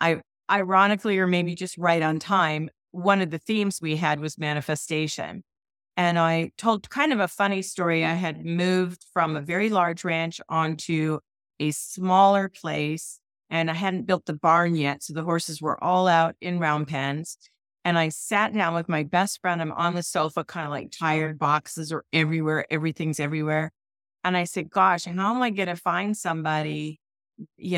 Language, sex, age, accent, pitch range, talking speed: English, female, 40-59, American, 155-190 Hz, 185 wpm